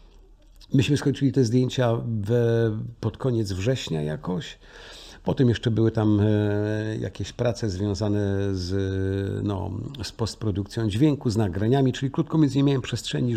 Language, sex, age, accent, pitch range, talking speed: Polish, male, 50-69, native, 95-110 Hz, 130 wpm